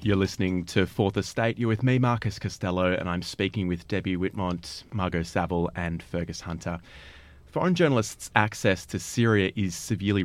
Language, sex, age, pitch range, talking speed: English, male, 30-49, 90-115 Hz, 165 wpm